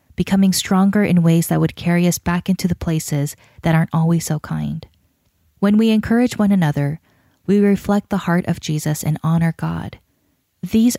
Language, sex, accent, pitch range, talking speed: English, female, American, 155-195 Hz, 175 wpm